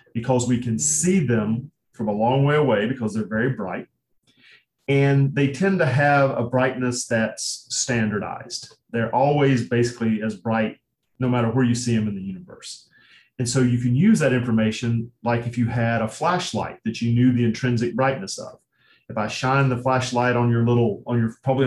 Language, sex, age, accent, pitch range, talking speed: English, male, 40-59, American, 115-130 Hz, 190 wpm